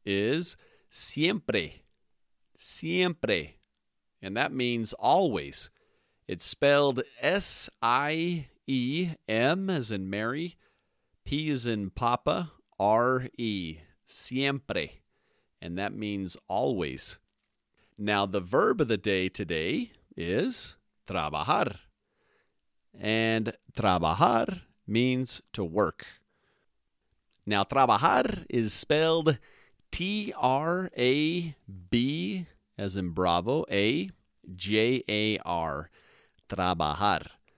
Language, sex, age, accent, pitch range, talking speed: English, male, 40-59, American, 90-130 Hz, 80 wpm